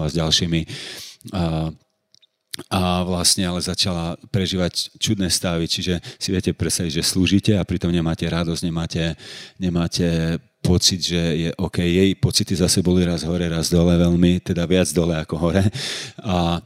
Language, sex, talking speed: Slovak, male, 150 wpm